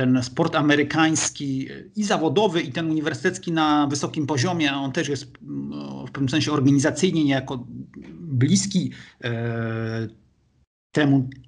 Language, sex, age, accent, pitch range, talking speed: Polish, male, 50-69, native, 125-155 Hz, 110 wpm